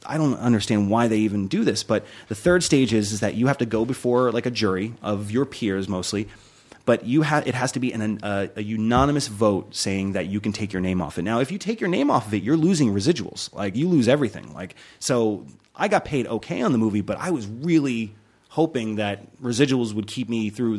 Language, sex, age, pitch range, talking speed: English, male, 30-49, 105-130 Hz, 245 wpm